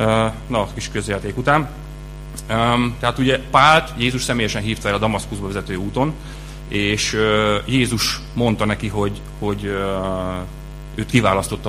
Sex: male